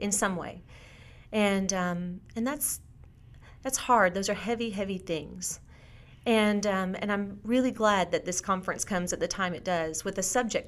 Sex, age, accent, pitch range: female, 30-49, American, 185-225 Hz